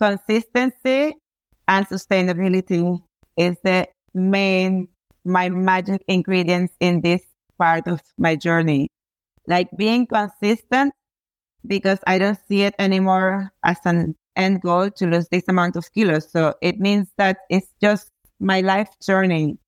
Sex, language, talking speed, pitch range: female, English, 130 wpm, 180-210 Hz